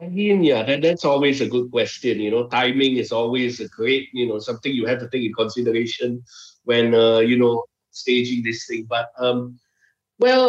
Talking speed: 200 wpm